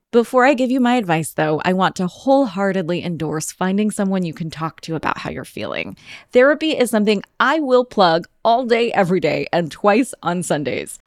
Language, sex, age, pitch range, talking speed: English, female, 20-39, 165-220 Hz, 195 wpm